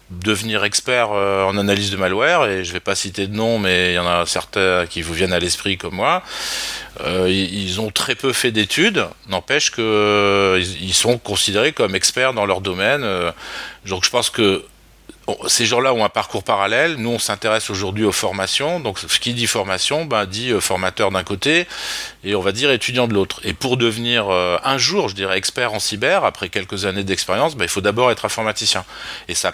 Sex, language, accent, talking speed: male, French, French, 205 wpm